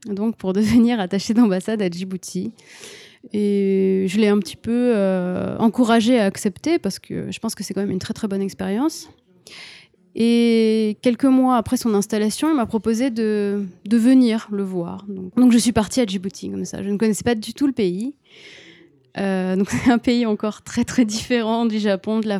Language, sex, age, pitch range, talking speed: French, female, 20-39, 190-230 Hz, 200 wpm